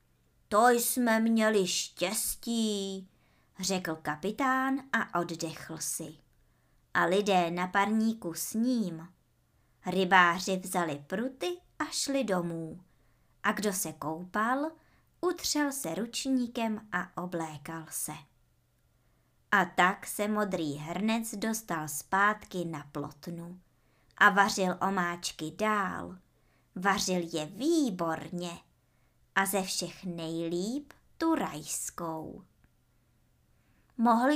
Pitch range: 170-250 Hz